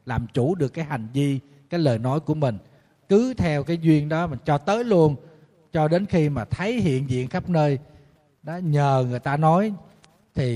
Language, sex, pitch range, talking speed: Vietnamese, male, 120-165 Hz, 200 wpm